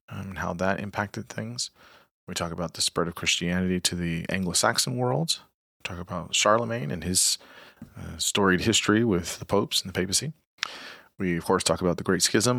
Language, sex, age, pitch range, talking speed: English, male, 40-59, 90-105 Hz, 185 wpm